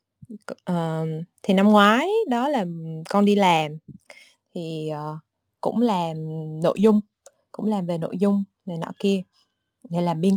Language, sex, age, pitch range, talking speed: Vietnamese, female, 20-39, 165-225 Hz, 150 wpm